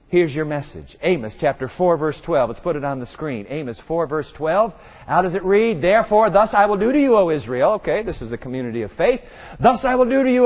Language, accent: English, American